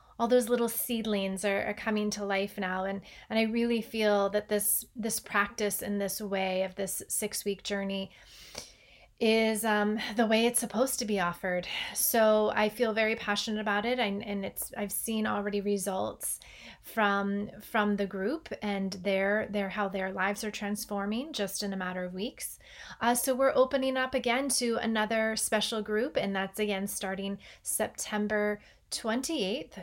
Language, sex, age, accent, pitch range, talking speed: English, female, 30-49, American, 200-245 Hz, 165 wpm